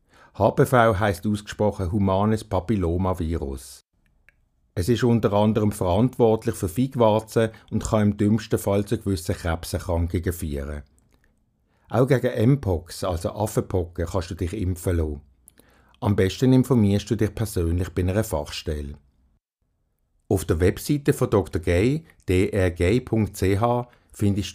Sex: male